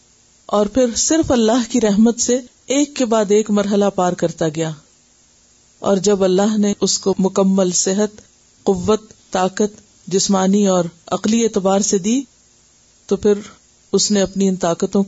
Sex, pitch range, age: female, 170-225 Hz, 50-69